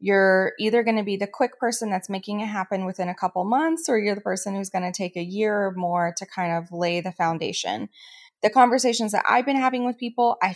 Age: 20-39